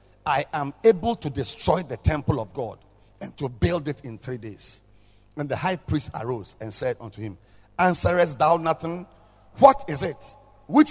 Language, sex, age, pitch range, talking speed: English, male, 50-69, 110-175 Hz, 175 wpm